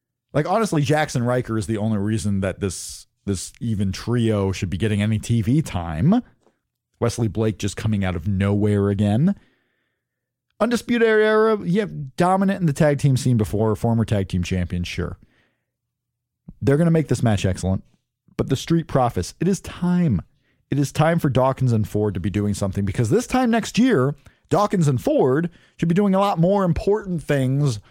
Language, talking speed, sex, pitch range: English, 180 wpm, male, 105-165 Hz